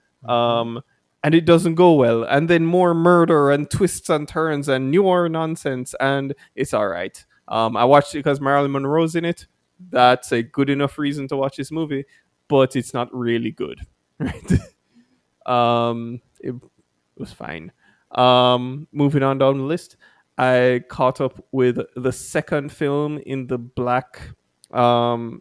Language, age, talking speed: English, 20-39, 155 wpm